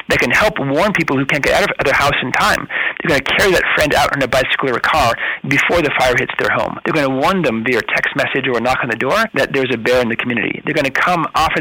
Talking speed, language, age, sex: 305 wpm, English, 40-59, male